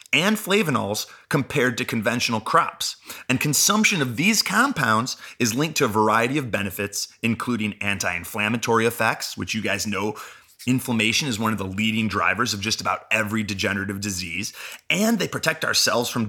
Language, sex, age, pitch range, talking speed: English, male, 30-49, 105-130 Hz, 160 wpm